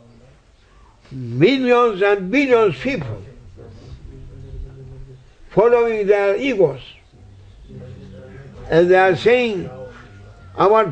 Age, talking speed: 60-79, 70 wpm